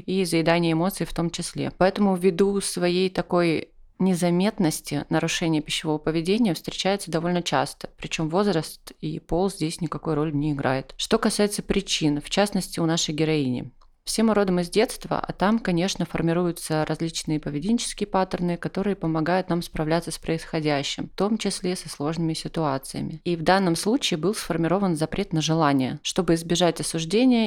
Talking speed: 155 wpm